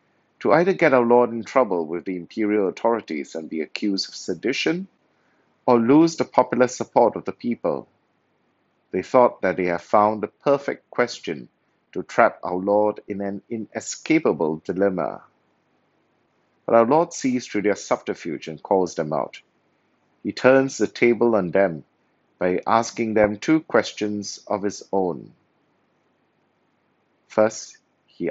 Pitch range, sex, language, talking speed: 95-125 Hz, male, English, 145 wpm